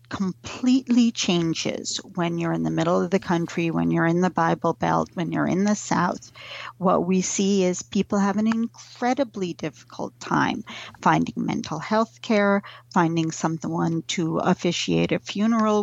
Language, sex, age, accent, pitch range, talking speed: English, female, 40-59, American, 165-200 Hz, 155 wpm